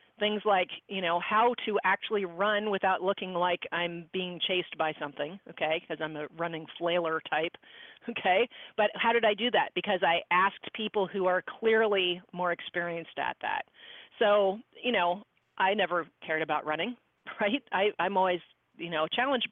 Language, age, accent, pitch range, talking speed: English, 40-59, American, 180-240 Hz, 170 wpm